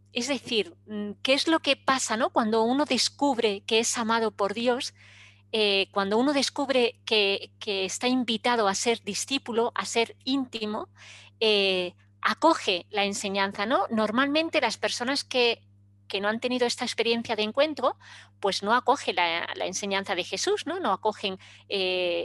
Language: Spanish